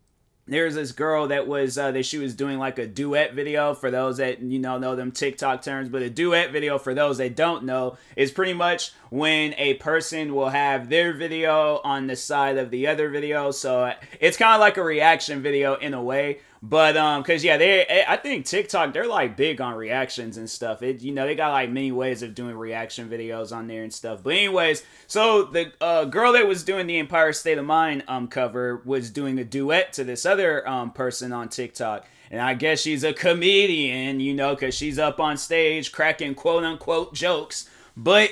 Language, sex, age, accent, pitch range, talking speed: English, male, 20-39, American, 130-160 Hz, 215 wpm